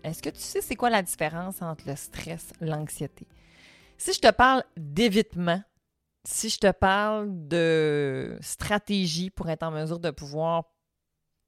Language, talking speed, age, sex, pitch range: French, 155 wpm, 30-49, female, 155-195 Hz